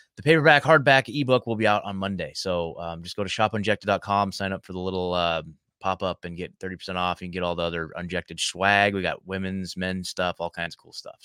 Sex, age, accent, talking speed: male, 20-39, American, 235 wpm